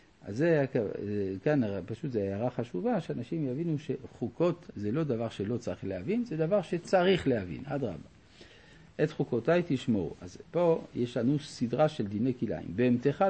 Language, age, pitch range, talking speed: Hebrew, 50-69, 105-150 Hz, 150 wpm